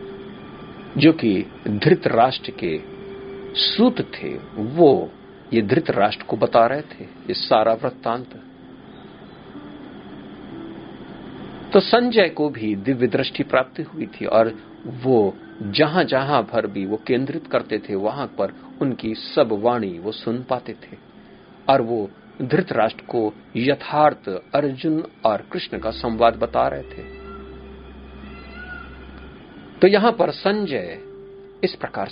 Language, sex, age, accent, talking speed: Hindi, male, 50-69, native, 120 wpm